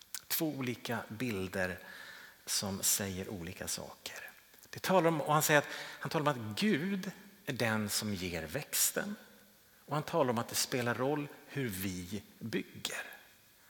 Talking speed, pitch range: 150 wpm, 110-175 Hz